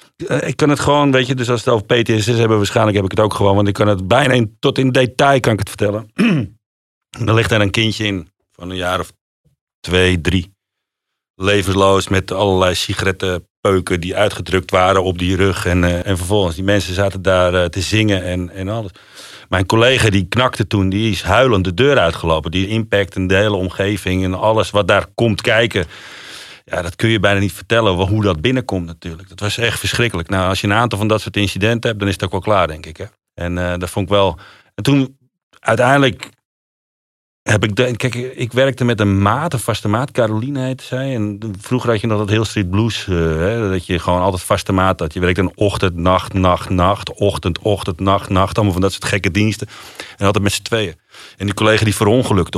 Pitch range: 95-115 Hz